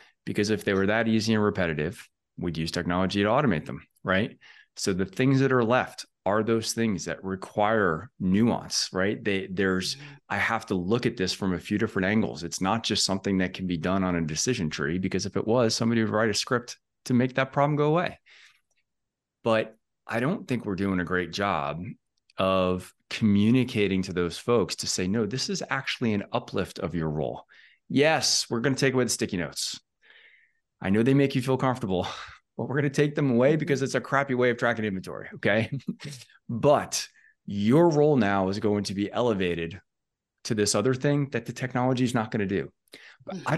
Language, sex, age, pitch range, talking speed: English, male, 30-49, 95-125 Hz, 200 wpm